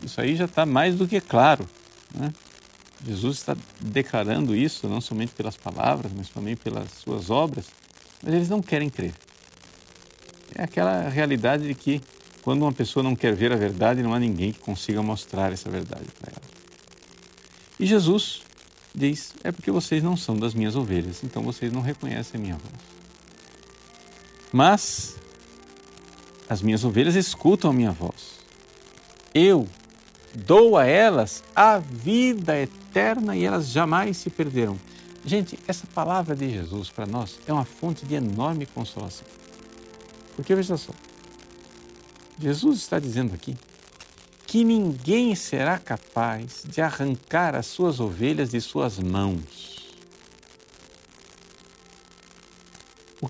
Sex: male